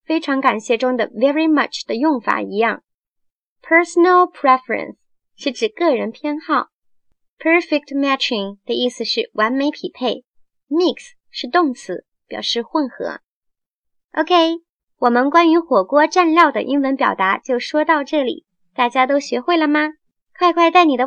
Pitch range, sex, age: 235-310 Hz, male, 20-39